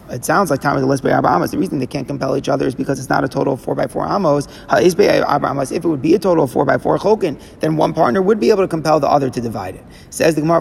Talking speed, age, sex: 290 wpm, 30-49, male